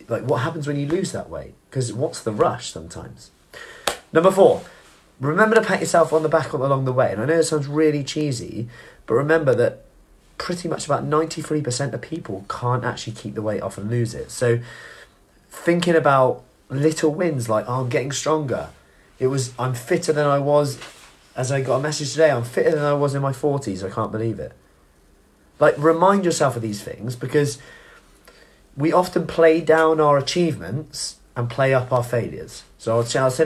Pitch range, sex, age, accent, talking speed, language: 120-160 Hz, male, 30-49, British, 190 wpm, English